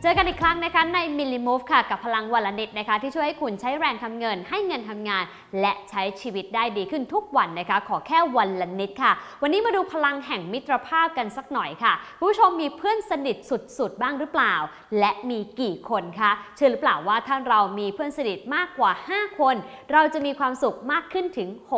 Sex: female